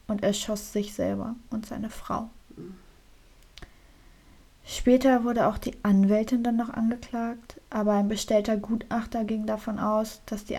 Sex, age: female, 20-39